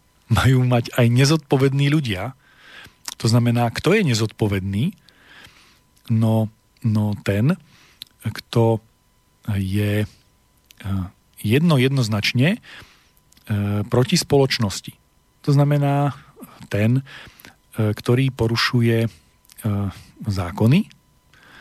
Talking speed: 70 wpm